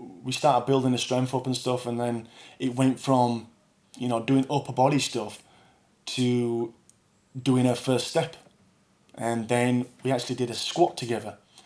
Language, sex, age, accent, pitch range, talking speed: English, male, 20-39, British, 115-135 Hz, 165 wpm